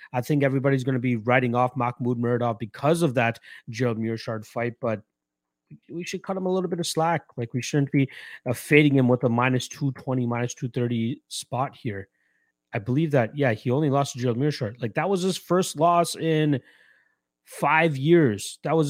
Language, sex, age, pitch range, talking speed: English, male, 30-49, 115-150 Hz, 195 wpm